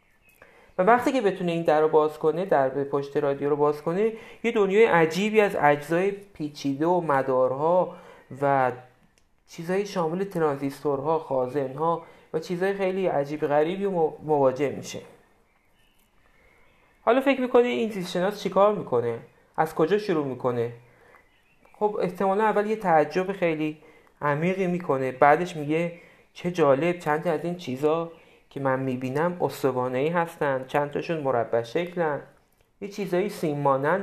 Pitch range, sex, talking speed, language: 145-195 Hz, male, 135 wpm, Persian